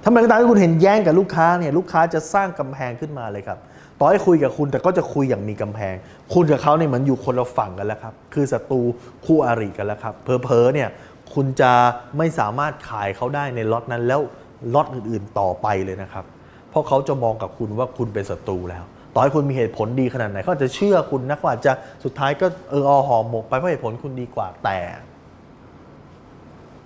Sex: male